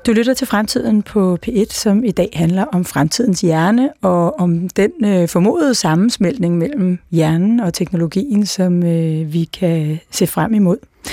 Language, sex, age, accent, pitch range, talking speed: Danish, female, 30-49, native, 175-215 Hz, 160 wpm